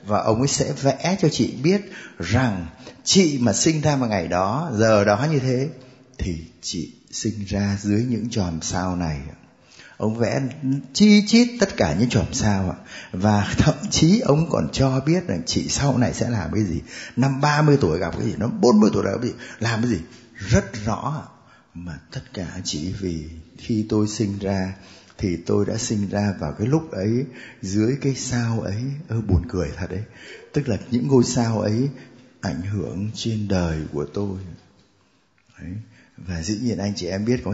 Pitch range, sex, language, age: 100-135 Hz, male, Vietnamese, 20-39